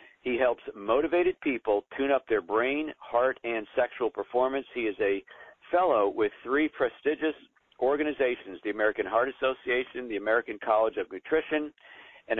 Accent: American